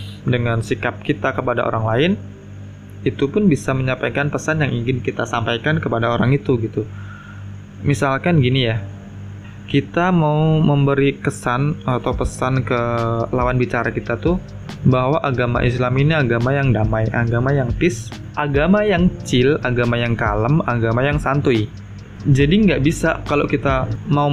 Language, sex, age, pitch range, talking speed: Indonesian, male, 20-39, 110-145 Hz, 145 wpm